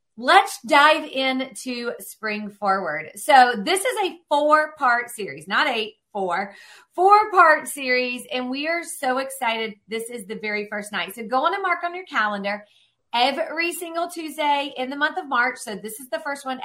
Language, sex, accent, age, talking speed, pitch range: English, female, American, 40-59, 185 wpm, 230-310 Hz